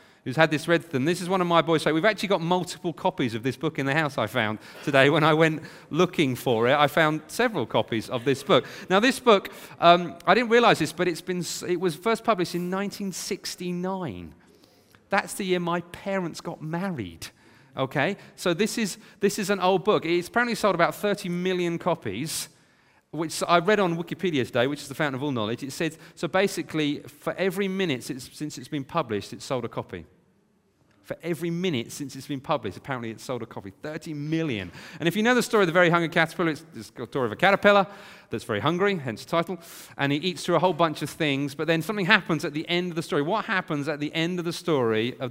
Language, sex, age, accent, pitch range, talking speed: English, male, 40-59, British, 140-185 Hz, 230 wpm